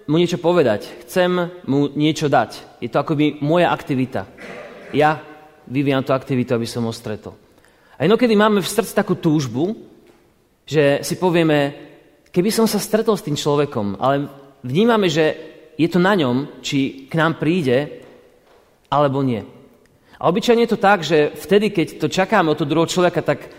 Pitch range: 135-175 Hz